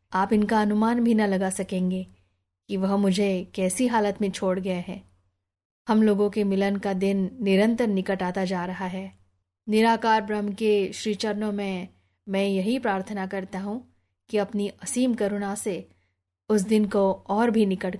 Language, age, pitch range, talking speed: Hindi, 20-39, 190-220 Hz, 165 wpm